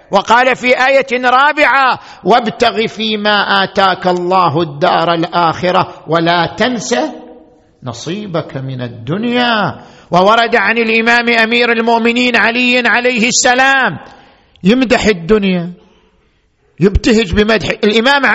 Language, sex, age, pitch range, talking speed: Arabic, male, 50-69, 155-230 Hz, 90 wpm